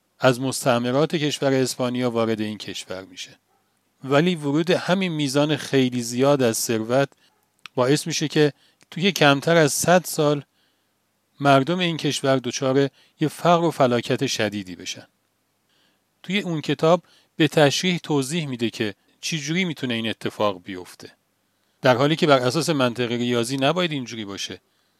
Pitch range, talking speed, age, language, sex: 115-155 Hz, 140 wpm, 40-59, Persian, male